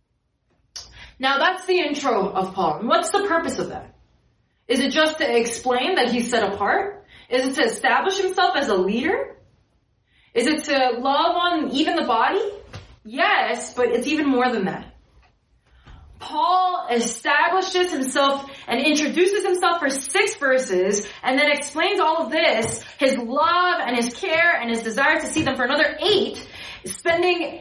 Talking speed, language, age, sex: 160 wpm, English, 20-39, female